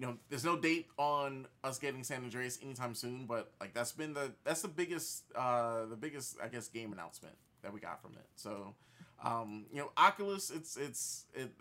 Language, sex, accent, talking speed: English, male, American, 205 wpm